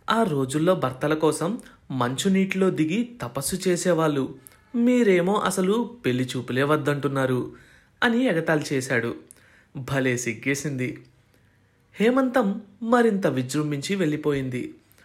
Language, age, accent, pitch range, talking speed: Telugu, 30-49, native, 135-195 Hz, 85 wpm